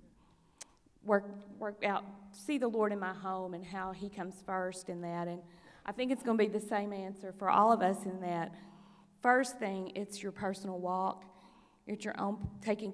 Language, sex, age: English, female, 40-59